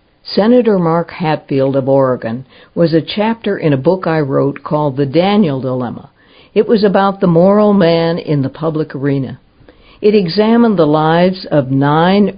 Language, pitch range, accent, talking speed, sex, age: English, 140-185 Hz, American, 160 wpm, female, 60-79